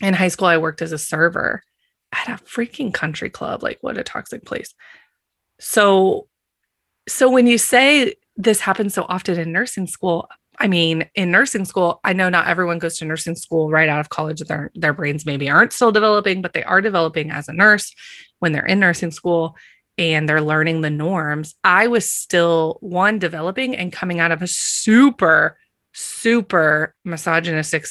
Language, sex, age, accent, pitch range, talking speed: English, female, 20-39, American, 160-210 Hz, 180 wpm